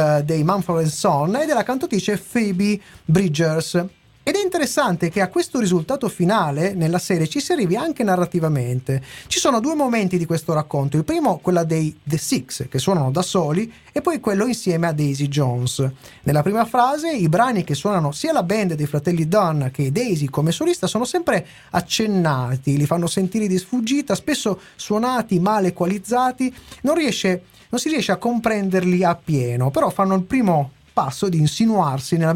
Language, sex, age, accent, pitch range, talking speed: Italian, male, 30-49, native, 155-225 Hz, 170 wpm